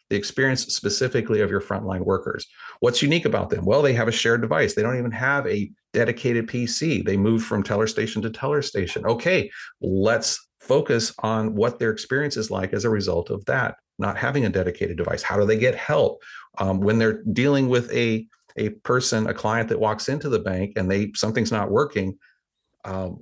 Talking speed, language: 200 wpm, English